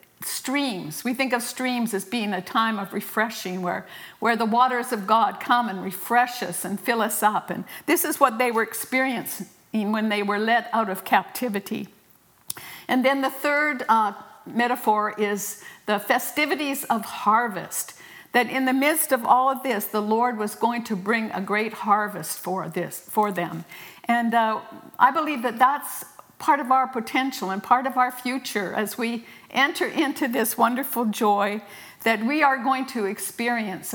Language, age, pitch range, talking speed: English, 60-79, 205-255 Hz, 175 wpm